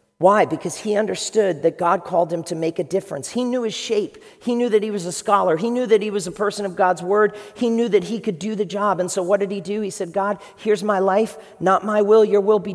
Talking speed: 280 wpm